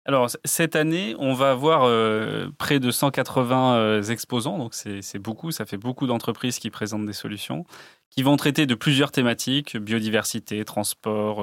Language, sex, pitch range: French, male, 115-145 Hz